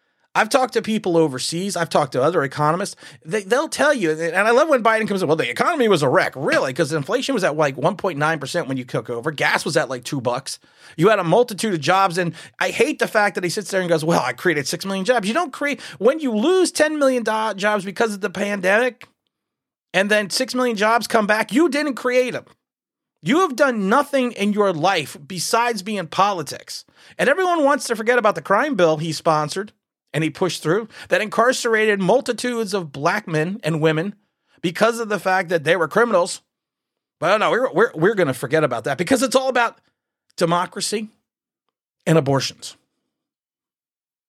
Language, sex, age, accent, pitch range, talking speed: English, male, 30-49, American, 170-240 Hz, 205 wpm